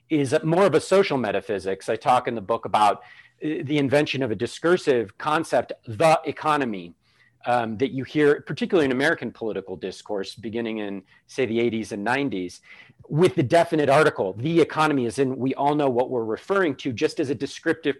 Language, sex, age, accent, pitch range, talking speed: English, male, 40-59, American, 125-165 Hz, 185 wpm